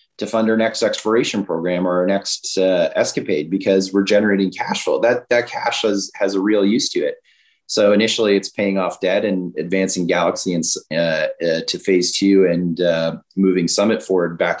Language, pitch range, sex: English, 90-105 Hz, male